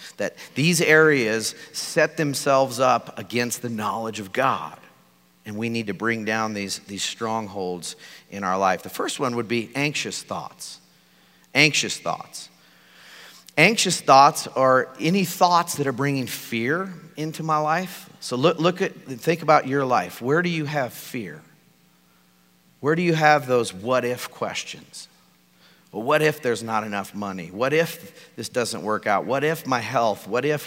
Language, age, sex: English, 40-59, male